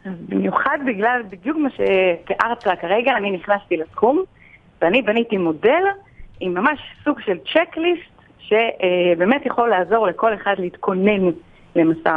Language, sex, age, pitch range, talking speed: Hebrew, female, 40-59, 180-270 Hz, 125 wpm